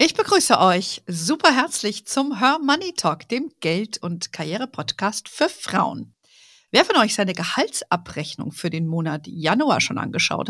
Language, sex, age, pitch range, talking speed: German, female, 50-69, 185-270 Hz, 135 wpm